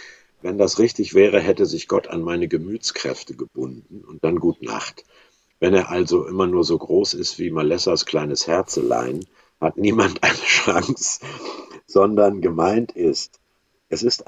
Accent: German